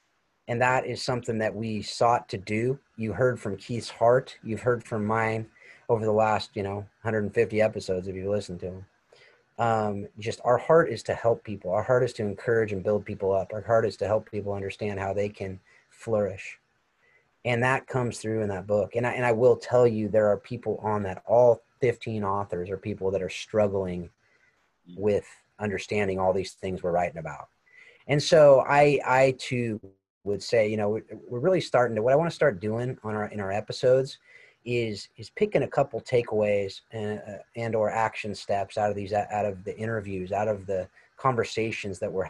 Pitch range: 100-120 Hz